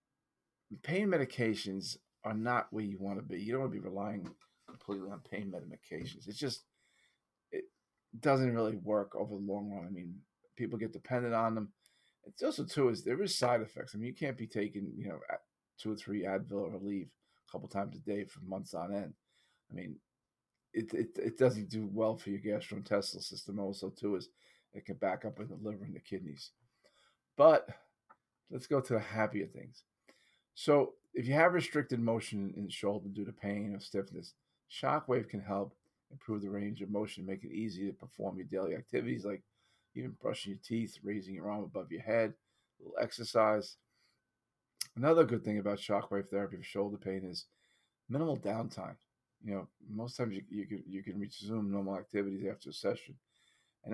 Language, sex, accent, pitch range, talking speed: English, male, American, 100-115 Hz, 190 wpm